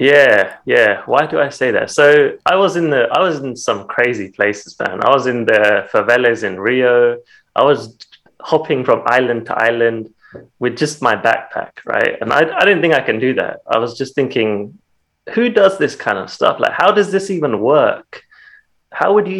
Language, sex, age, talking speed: English, male, 20-39, 205 wpm